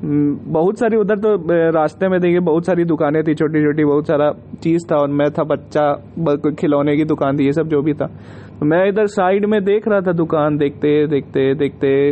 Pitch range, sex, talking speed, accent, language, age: 145-185 Hz, male, 210 wpm, native, Hindi, 20-39